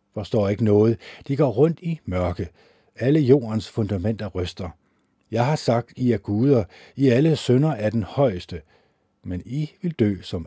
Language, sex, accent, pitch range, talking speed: Danish, male, native, 95-125 Hz, 165 wpm